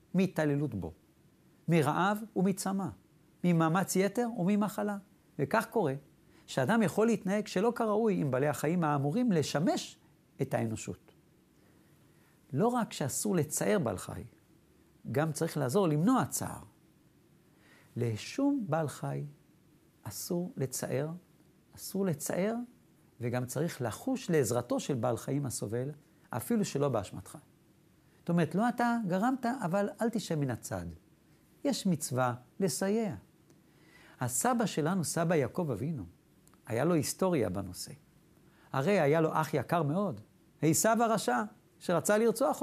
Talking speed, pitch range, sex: 115 wpm, 150-215 Hz, male